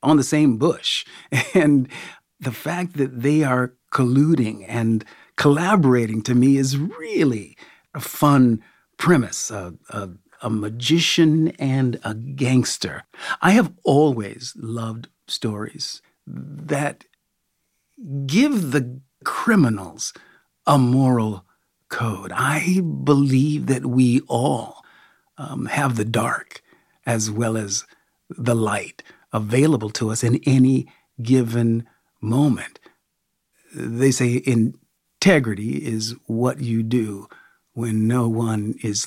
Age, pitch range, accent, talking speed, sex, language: 50-69, 110-140 Hz, American, 110 wpm, male, English